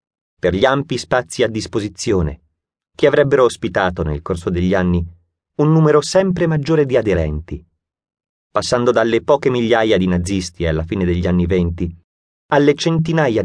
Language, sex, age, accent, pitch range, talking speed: Italian, male, 30-49, native, 80-125 Hz, 145 wpm